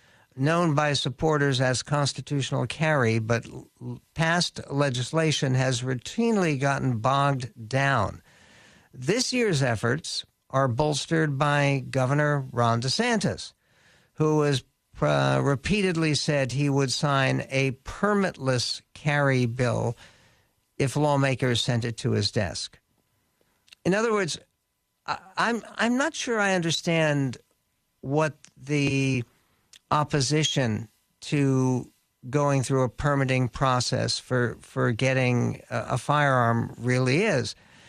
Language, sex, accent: English, male, American